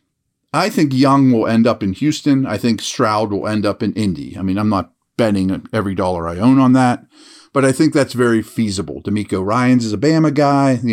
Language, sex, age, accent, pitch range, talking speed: English, male, 40-59, American, 100-135 Hz, 220 wpm